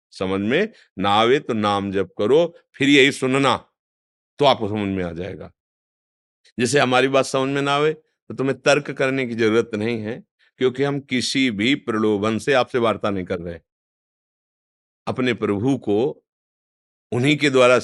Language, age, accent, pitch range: Hindi, 50-69, native, 105-155 Hz